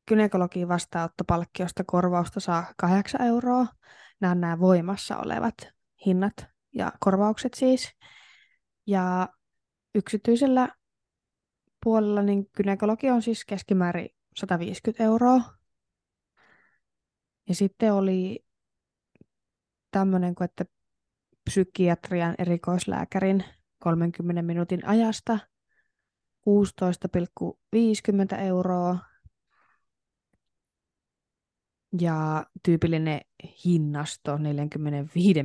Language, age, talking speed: Finnish, 20-39, 70 wpm